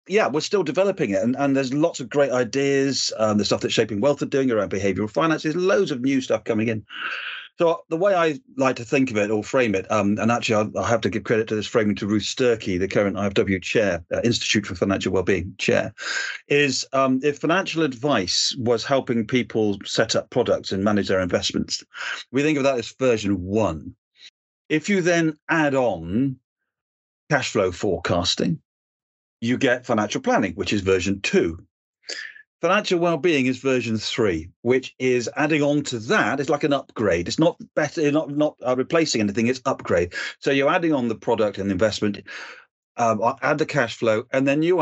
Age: 40-59